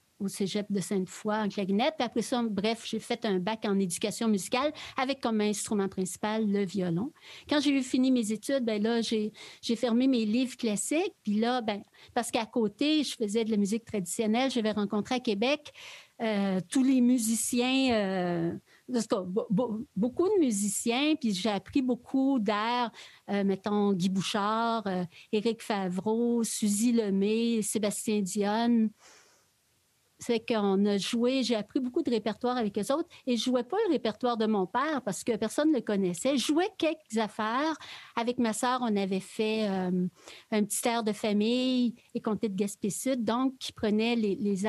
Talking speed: 175 wpm